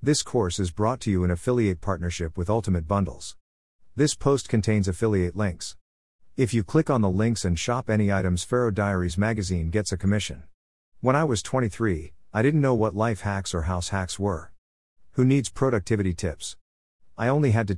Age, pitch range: 50-69, 90-115 Hz